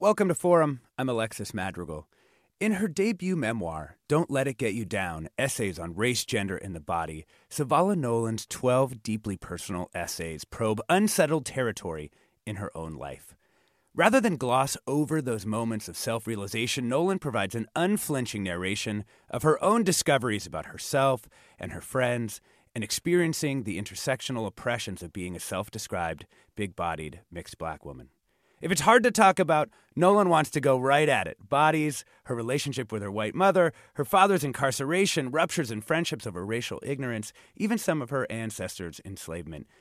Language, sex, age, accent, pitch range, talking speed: English, male, 30-49, American, 100-155 Hz, 160 wpm